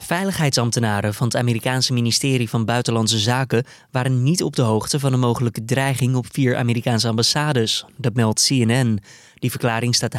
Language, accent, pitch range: Dutch, Dutch, 115-145 Hz